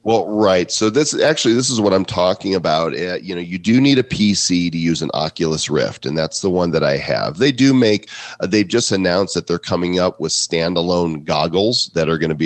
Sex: male